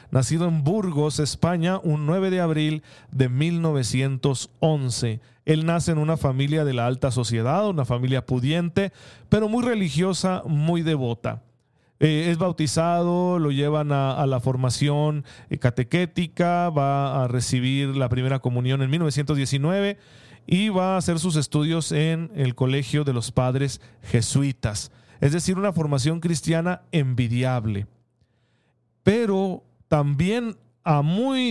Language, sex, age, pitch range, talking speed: Spanish, male, 40-59, 130-165 Hz, 130 wpm